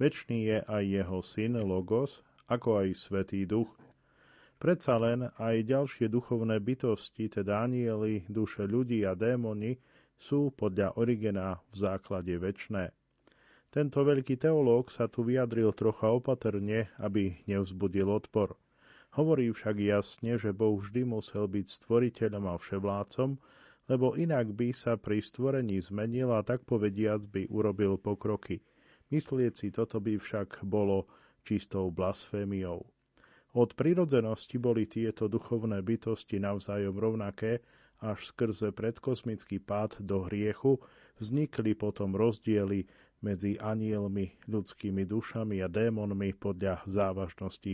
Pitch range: 100-120 Hz